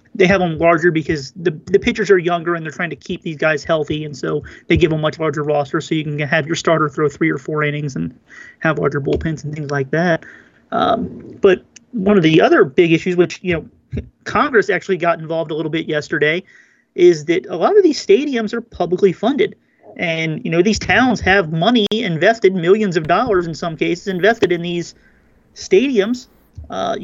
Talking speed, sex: 205 wpm, male